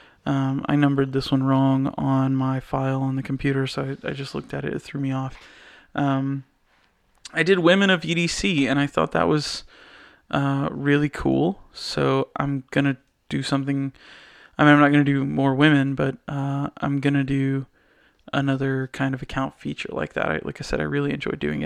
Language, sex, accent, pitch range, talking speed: English, male, American, 135-150 Hz, 195 wpm